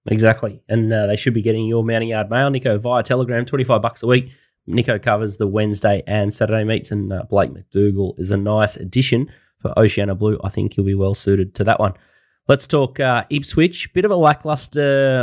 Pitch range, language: 105-120 Hz, English